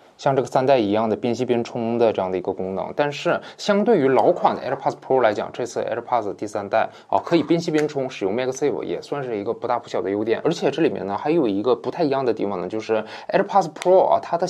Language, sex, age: Chinese, male, 20-39